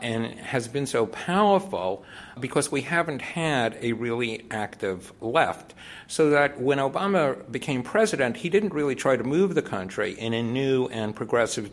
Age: 60-79